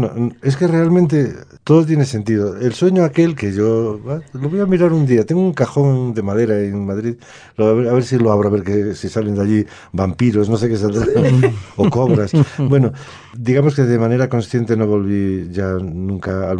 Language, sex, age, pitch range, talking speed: Spanish, male, 50-69, 95-115 Hz, 205 wpm